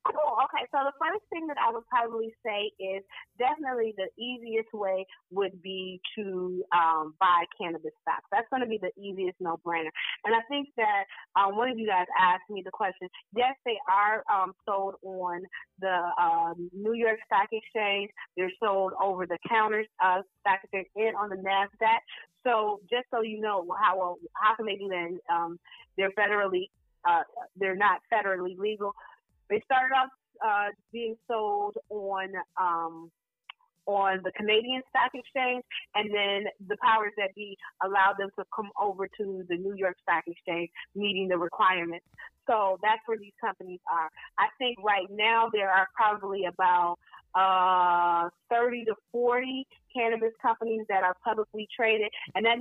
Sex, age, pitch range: female, 30-49, 185-230 Hz